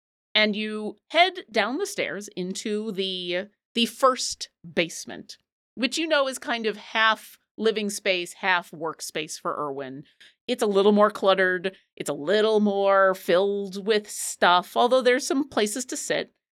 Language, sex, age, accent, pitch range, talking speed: English, female, 40-59, American, 180-245 Hz, 150 wpm